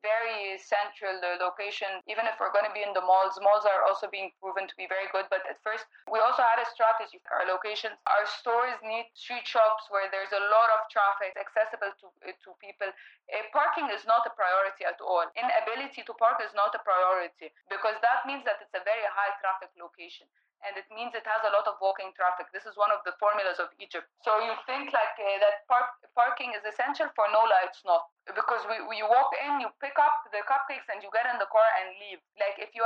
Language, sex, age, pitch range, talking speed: English, female, 20-39, 190-230 Hz, 230 wpm